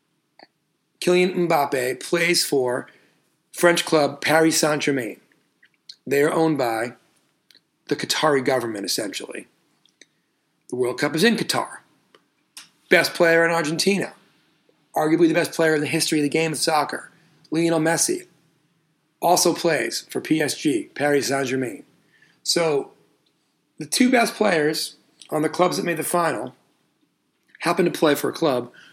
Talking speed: 135 wpm